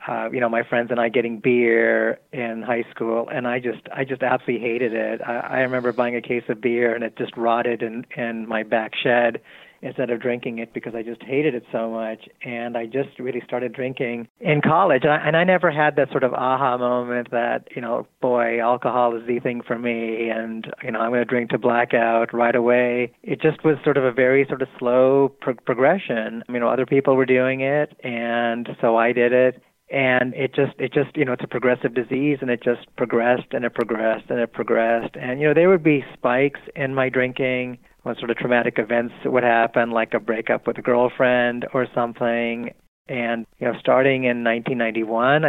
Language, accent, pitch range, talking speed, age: English, American, 115-130 Hz, 210 wpm, 30-49